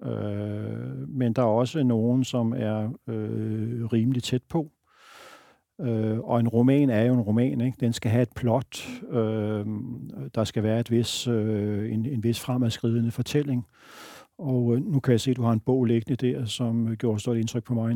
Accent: native